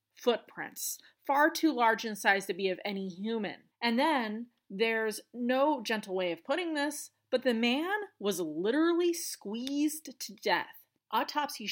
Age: 30-49